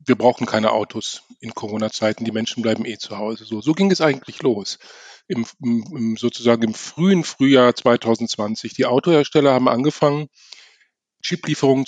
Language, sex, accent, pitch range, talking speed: German, male, German, 120-145 Hz, 150 wpm